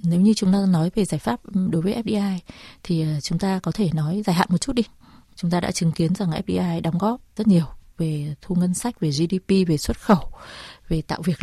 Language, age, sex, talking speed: Vietnamese, 20-39, female, 235 wpm